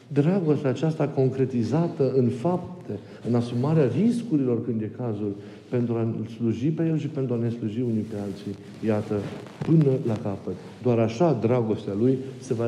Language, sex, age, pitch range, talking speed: Romanian, male, 50-69, 110-140 Hz, 160 wpm